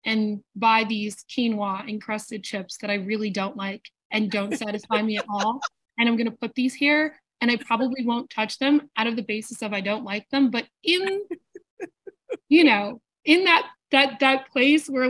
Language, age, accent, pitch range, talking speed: English, 20-39, American, 210-270 Hz, 190 wpm